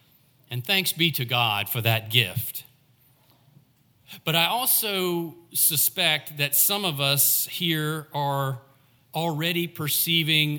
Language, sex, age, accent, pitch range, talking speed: English, male, 40-59, American, 125-145 Hz, 115 wpm